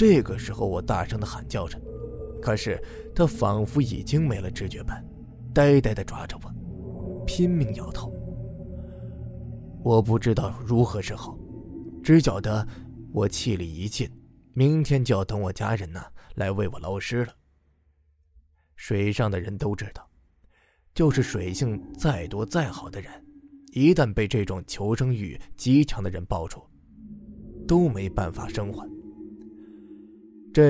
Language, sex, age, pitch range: Chinese, male, 20-39, 100-150 Hz